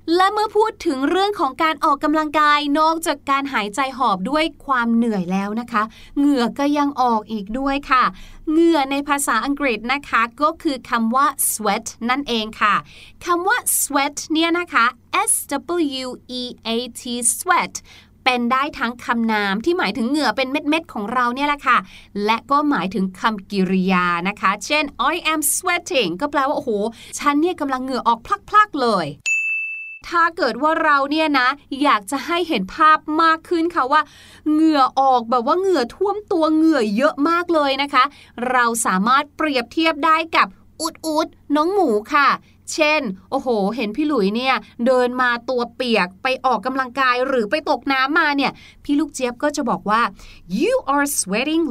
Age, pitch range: 20-39, 240-320 Hz